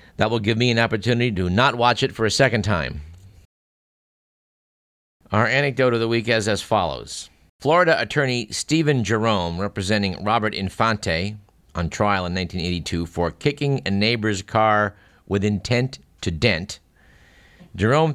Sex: male